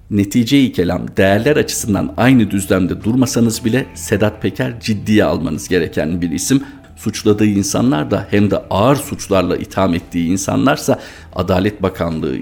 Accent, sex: native, male